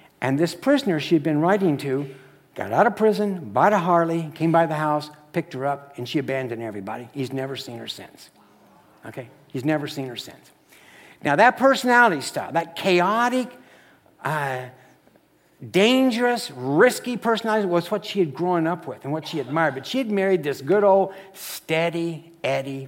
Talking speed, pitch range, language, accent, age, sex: 175 wpm, 165-225 Hz, English, American, 60-79, male